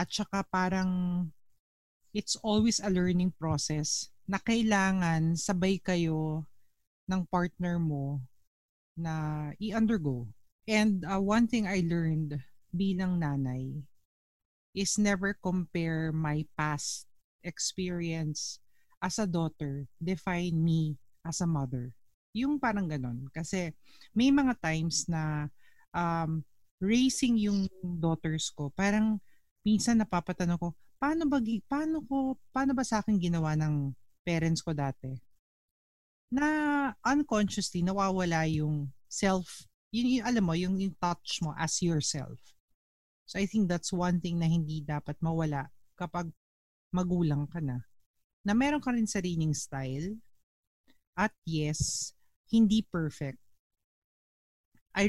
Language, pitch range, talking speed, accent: Filipino, 145-195 Hz, 120 wpm, native